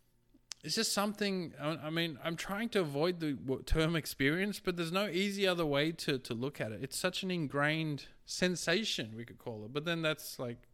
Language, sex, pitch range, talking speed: English, male, 130-185 Hz, 200 wpm